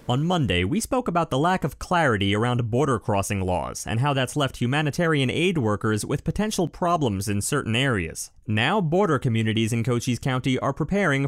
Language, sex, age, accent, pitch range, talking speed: English, male, 30-49, American, 110-160 Hz, 180 wpm